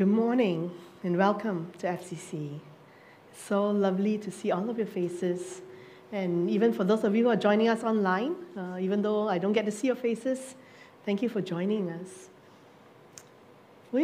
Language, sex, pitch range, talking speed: English, female, 175-215 Hz, 175 wpm